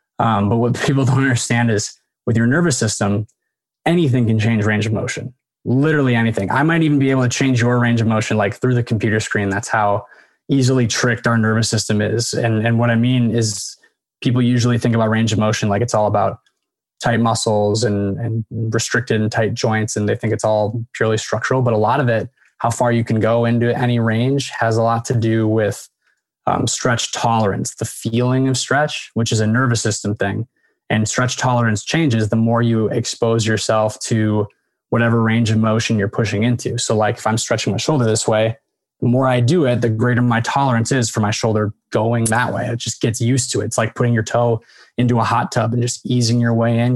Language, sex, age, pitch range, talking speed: English, male, 20-39, 110-120 Hz, 215 wpm